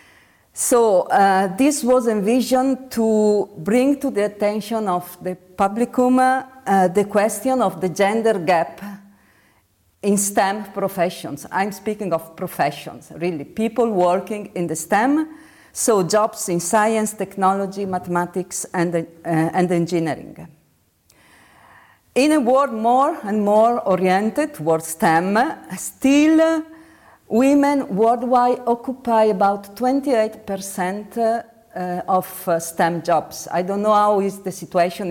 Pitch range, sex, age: 180-240 Hz, female, 50-69